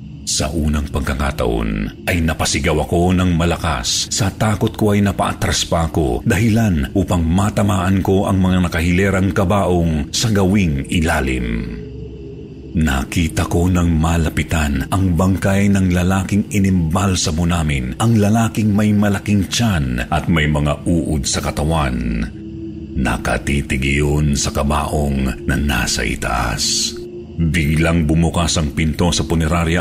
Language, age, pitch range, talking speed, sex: Filipino, 40-59, 75-95 Hz, 120 wpm, male